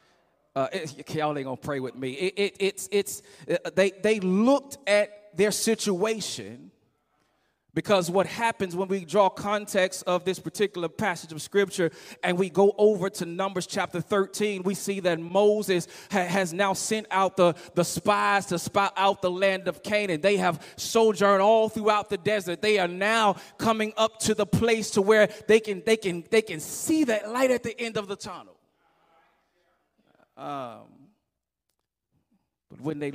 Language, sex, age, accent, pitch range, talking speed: English, male, 30-49, American, 155-205 Hz, 170 wpm